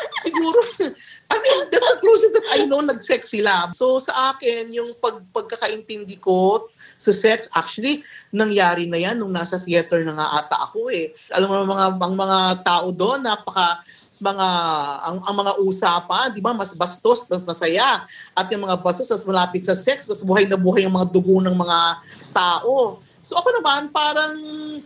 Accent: Filipino